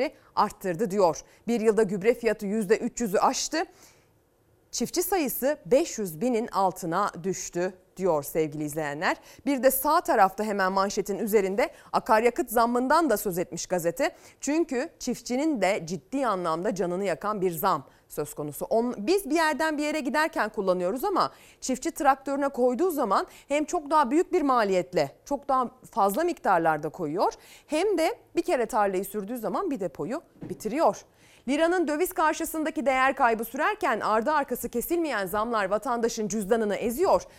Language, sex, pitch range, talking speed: Turkish, female, 190-290 Hz, 140 wpm